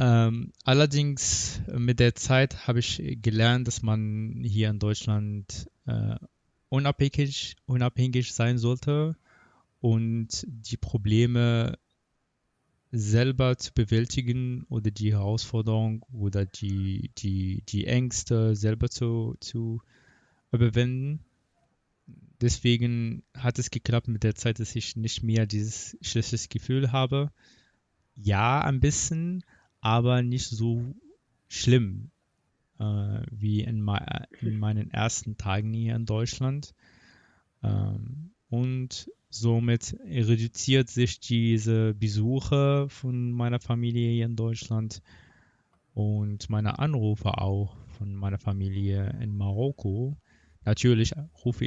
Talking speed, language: 105 wpm, German